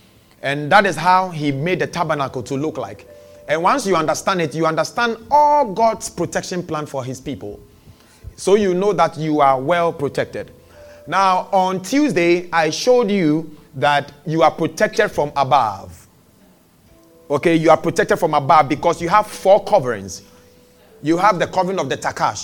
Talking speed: 170 wpm